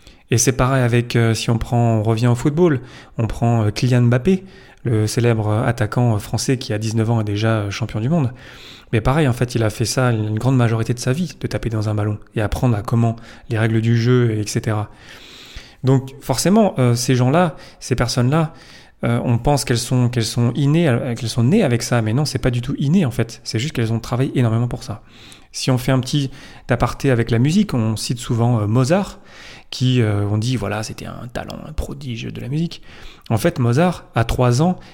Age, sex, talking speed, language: 30-49, male, 210 wpm, French